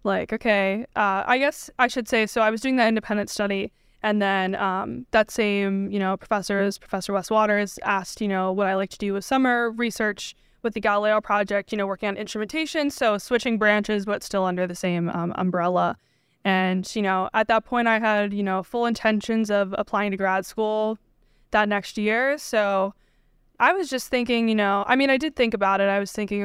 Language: English